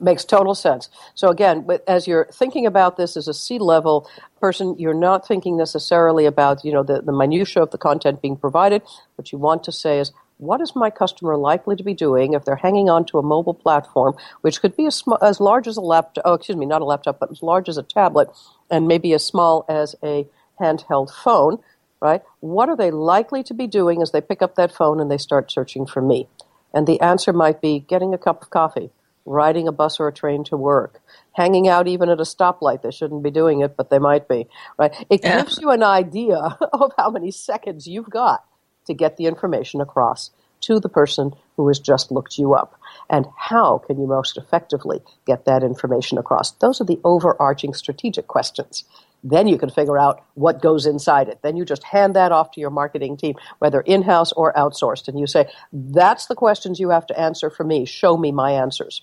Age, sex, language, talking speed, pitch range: 60-79, female, English, 220 wpm, 145-185 Hz